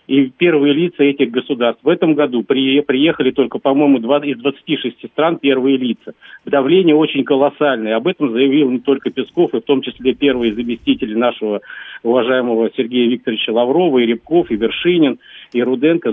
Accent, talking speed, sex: native, 165 wpm, male